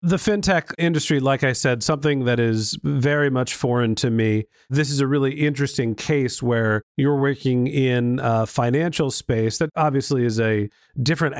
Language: English